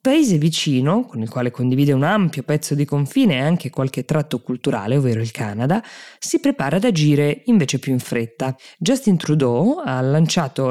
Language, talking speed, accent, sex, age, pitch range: Italian, 175 wpm, native, female, 20-39, 130-160 Hz